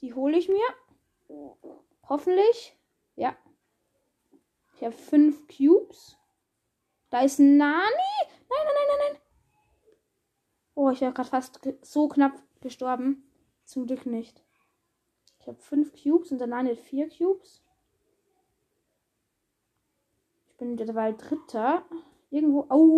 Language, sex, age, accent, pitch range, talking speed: German, female, 10-29, German, 250-345 Hz, 120 wpm